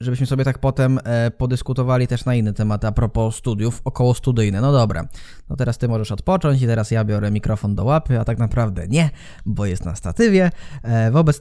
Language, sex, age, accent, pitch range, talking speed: Polish, male, 20-39, native, 115-145 Hz, 205 wpm